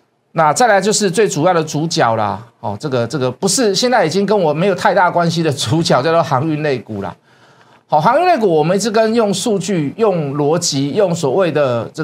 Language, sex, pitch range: Chinese, male, 140-195 Hz